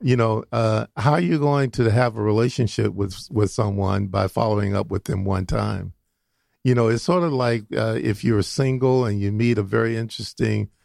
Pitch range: 110-130 Hz